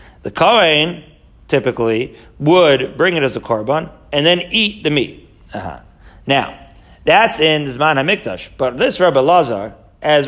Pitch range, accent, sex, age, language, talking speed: 130-170 Hz, American, male, 40-59, English, 145 wpm